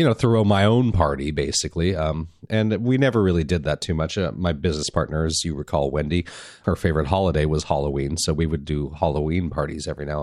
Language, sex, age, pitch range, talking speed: English, male, 30-49, 80-105 Hz, 215 wpm